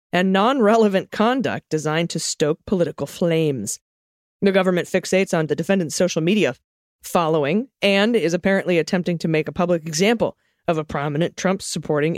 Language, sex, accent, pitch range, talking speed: English, female, American, 160-205 Hz, 150 wpm